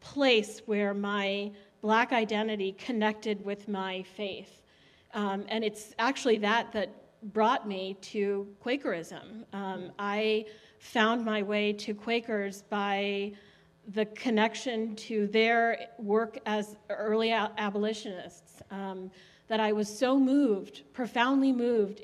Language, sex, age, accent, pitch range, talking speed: English, female, 40-59, American, 205-235 Hz, 115 wpm